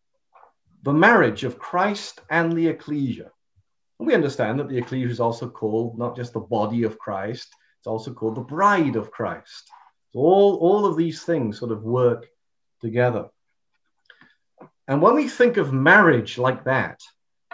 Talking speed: 155 wpm